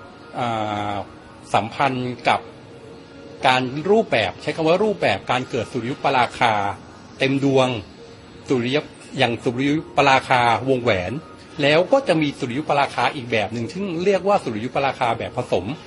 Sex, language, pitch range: male, Thai, 120-165 Hz